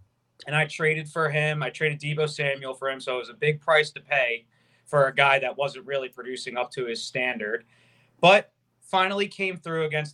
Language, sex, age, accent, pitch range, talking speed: English, male, 30-49, American, 125-155 Hz, 205 wpm